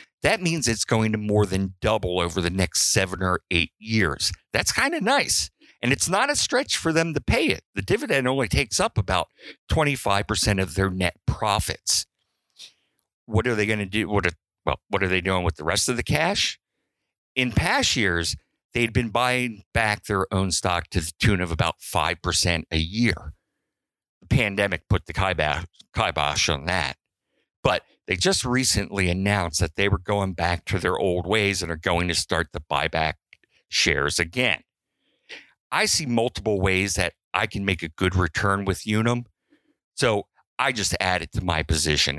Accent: American